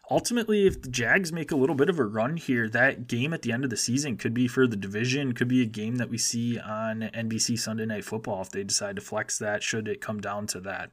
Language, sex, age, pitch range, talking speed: English, male, 20-39, 110-130 Hz, 270 wpm